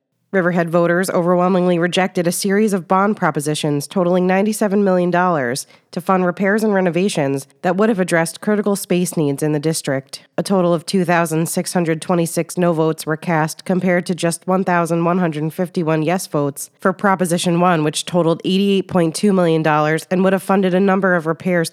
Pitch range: 160-185 Hz